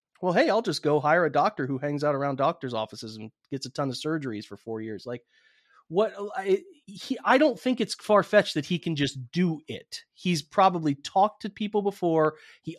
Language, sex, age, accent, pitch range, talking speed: English, male, 30-49, American, 135-180 Hz, 215 wpm